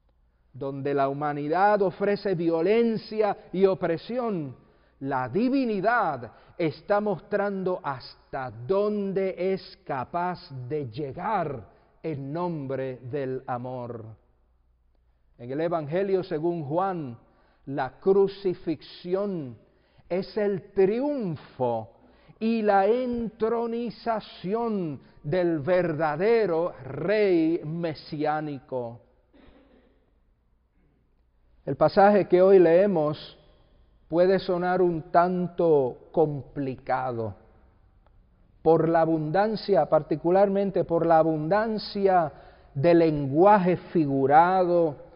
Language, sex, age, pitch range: English, male, 50-69, 145-195 Hz